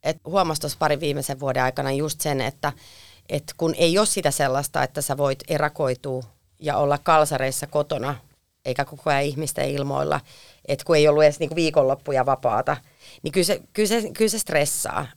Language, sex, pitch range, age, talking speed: Finnish, female, 135-160 Hz, 30-49, 170 wpm